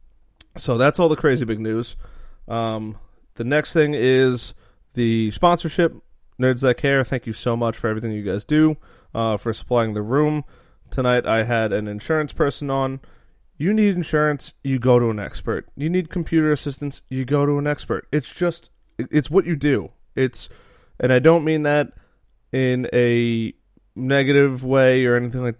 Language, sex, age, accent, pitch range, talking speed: English, male, 30-49, American, 115-150 Hz, 175 wpm